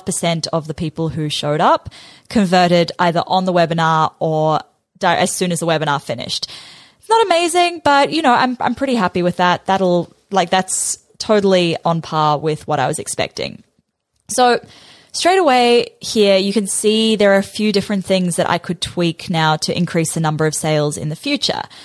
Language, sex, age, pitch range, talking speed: English, female, 20-39, 165-210 Hz, 190 wpm